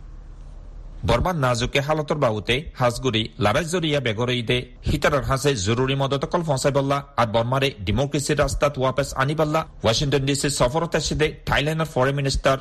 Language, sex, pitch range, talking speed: Bengali, male, 115-145 Hz, 55 wpm